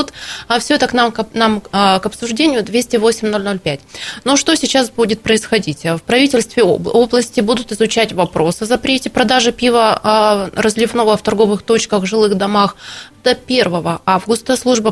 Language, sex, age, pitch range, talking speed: Russian, female, 20-39, 200-240 Hz, 140 wpm